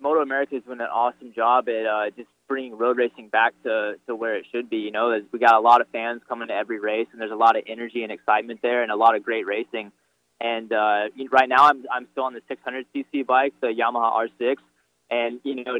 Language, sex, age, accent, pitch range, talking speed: English, male, 20-39, American, 110-125 Hz, 250 wpm